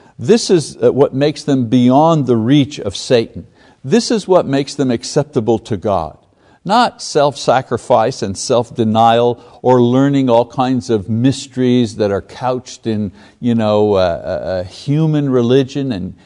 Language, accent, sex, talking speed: English, American, male, 145 wpm